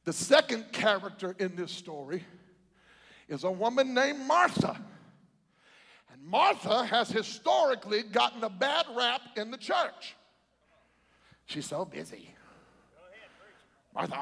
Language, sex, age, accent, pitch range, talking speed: English, male, 50-69, American, 220-345 Hz, 110 wpm